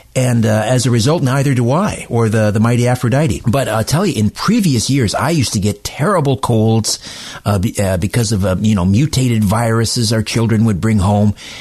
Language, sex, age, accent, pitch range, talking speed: English, male, 50-69, American, 105-135 Hz, 210 wpm